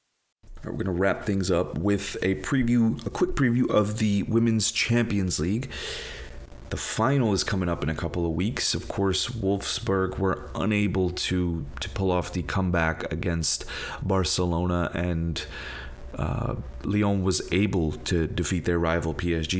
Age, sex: 30-49, male